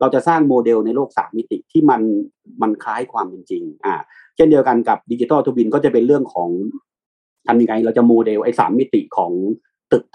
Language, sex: Thai, male